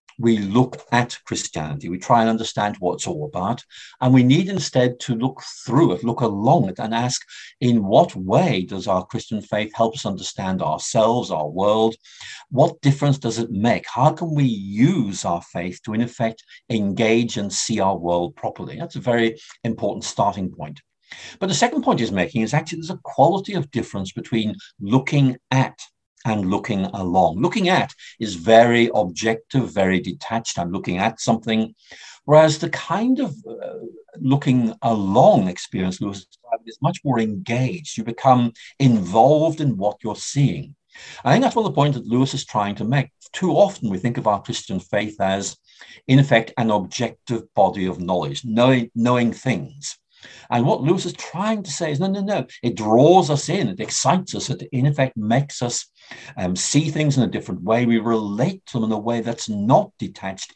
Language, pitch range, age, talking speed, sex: English, 105-140 Hz, 50-69, 185 wpm, male